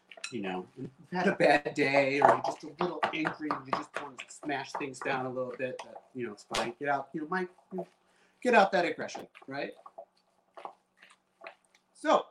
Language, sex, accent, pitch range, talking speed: English, male, American, 130-190 Hz, 205 wpm